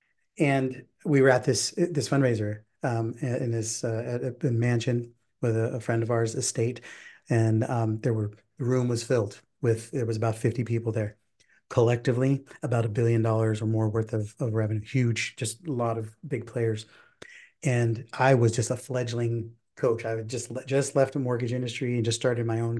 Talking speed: 190 wpm